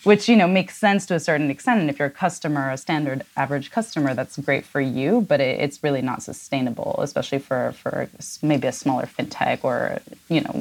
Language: English